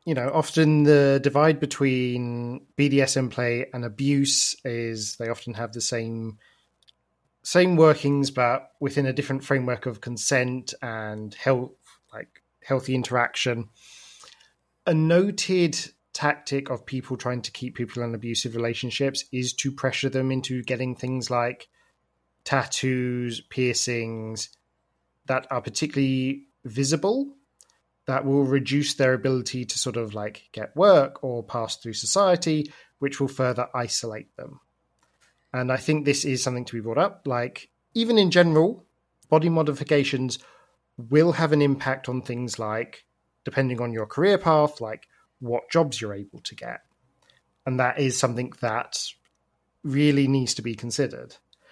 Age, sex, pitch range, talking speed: 20-39, male, 120-140 Hz, 140 wpm